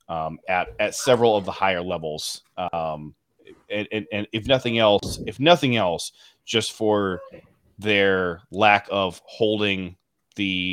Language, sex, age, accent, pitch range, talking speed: English, male, 30-49, American, 95-110 Hz, 140 wpm